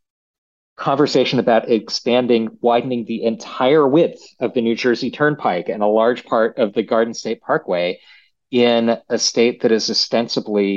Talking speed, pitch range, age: 150 wpm, 95-120 Hz, 40-59